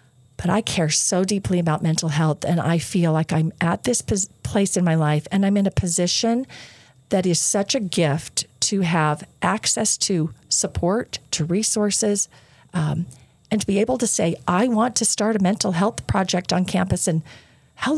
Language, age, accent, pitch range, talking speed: English, 40-59, American, 160-215 Hz, 185 wpm